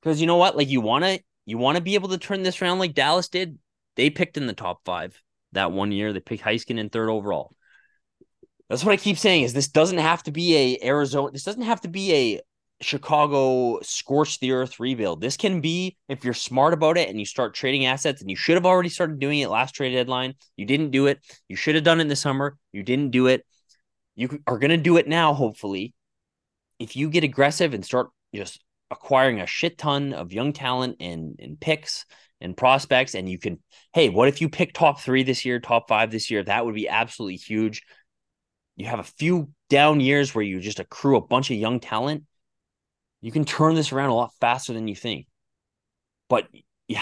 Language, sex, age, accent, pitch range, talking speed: English, male, 20-39, American, 115-155 Hz, 220 wpm